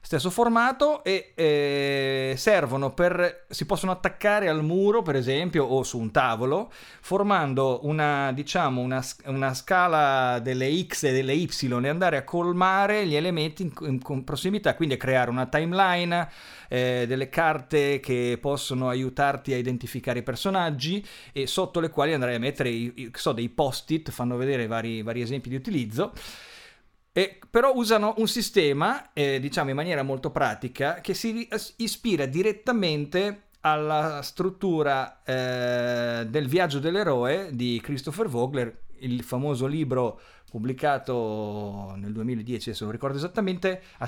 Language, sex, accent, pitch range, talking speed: Italian, male, native, 125-175 Hz, 145 wpm